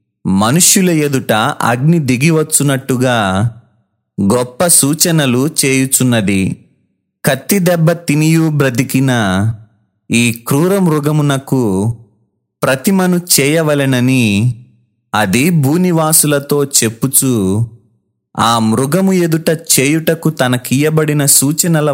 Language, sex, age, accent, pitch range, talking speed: Telugu, male, 30-49, native, 120-155 Hz, 70 wpm